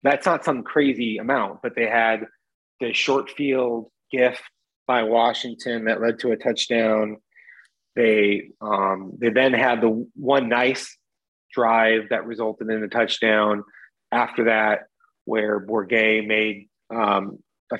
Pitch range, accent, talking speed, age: 105-120 Hz, American, 135 wpm, 30-49